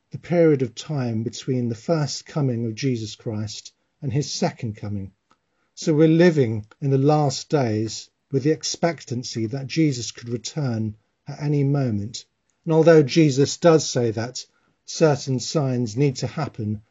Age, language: 50-69, English